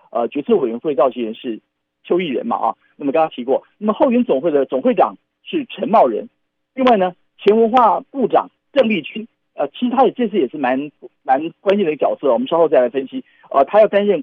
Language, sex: Chinese, male